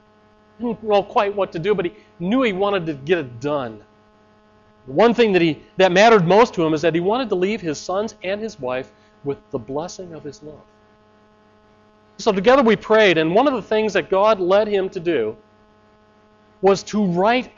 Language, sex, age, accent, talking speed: English, male, 40-59, American, 210 wpm